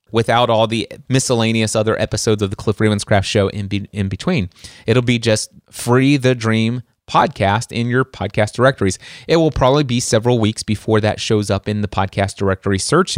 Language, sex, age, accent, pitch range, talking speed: English, male, 30-49, American, 105-135 Hz, 185 wpm